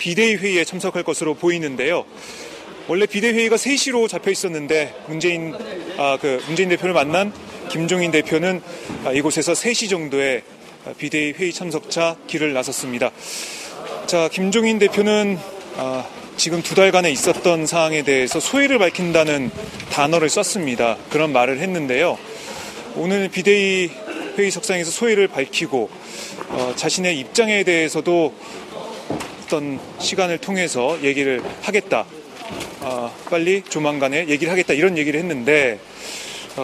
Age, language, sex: 30-49, Korean, male